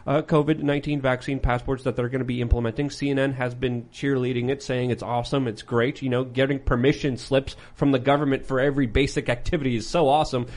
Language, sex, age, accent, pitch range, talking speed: English, male, 30-49, American, 120-145 Hz, 200 wpm